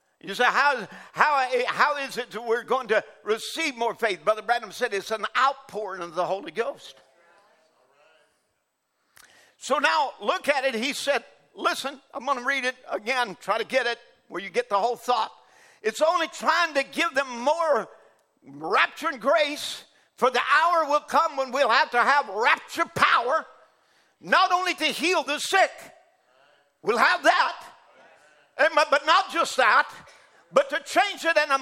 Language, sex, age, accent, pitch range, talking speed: English, male, 50-69, American, 245-320 Hz, 165 wpm